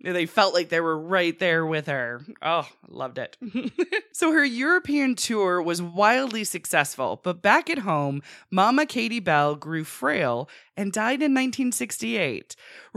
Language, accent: English, American